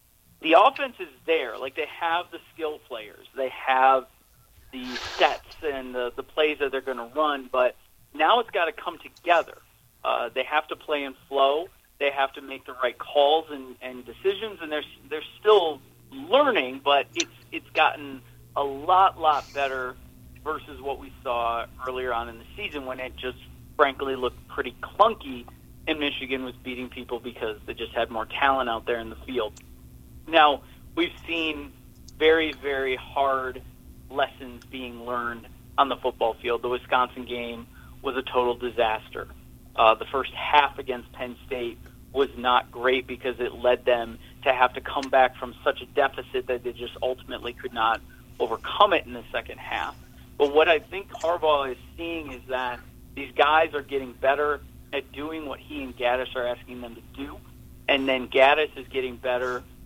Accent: American